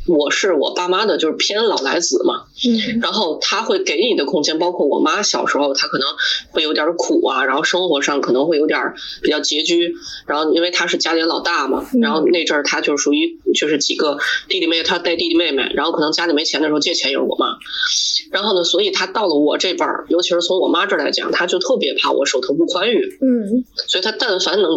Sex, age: female, 20-39